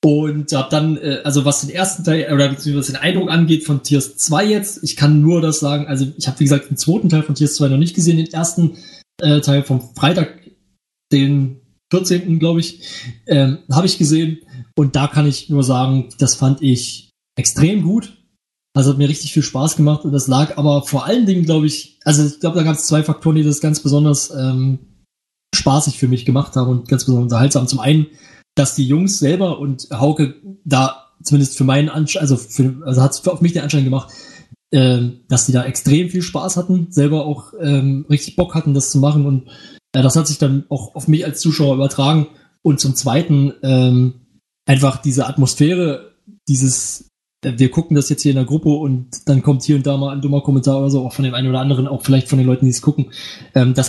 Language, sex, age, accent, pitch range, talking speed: German, male, 20-39, German, 135-155 Hz, 215 wpm